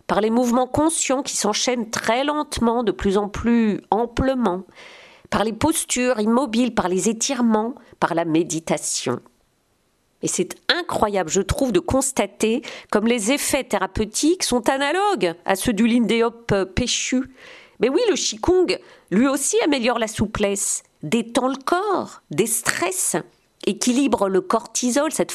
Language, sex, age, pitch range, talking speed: French, female, 50-69, 200-275 Hz, 135 wpm